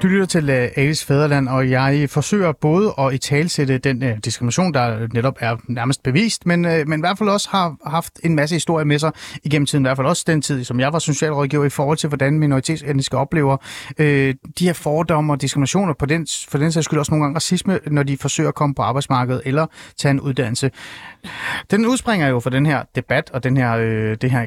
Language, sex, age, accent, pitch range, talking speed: Danish, male, 30-49, native, 135-175 Hz, 220 wpm